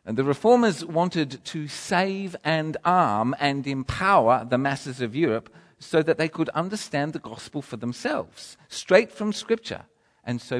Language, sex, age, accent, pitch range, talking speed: English, male, 50-69, British, 140-210 Hz, 160 wpm